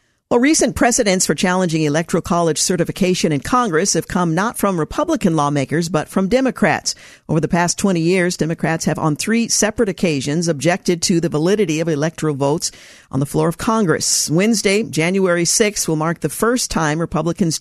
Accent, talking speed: American, 175 wpm